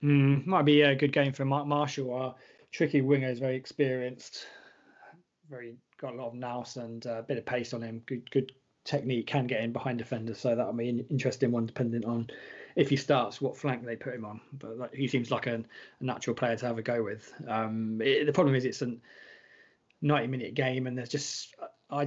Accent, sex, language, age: British, male, English, 20-39